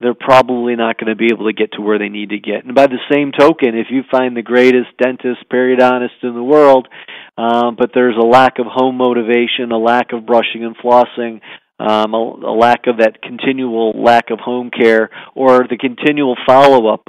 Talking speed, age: 205 wpm, 40-59